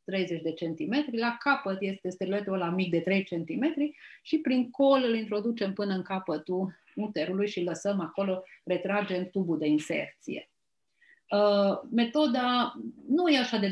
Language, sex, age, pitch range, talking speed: Romanian, female, 30-49, 170-225 Hz, 150 wpm